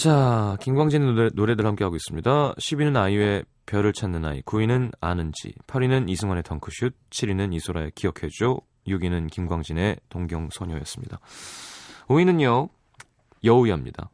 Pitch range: 90-120 Hz